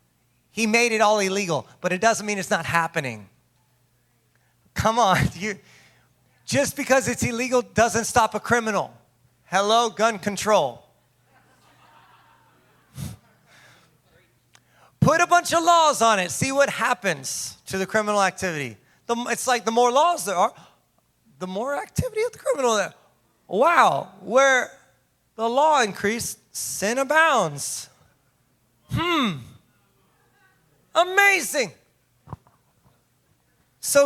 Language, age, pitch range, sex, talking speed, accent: English, 30-49, 150-250 Hz, male, 110 wpm, American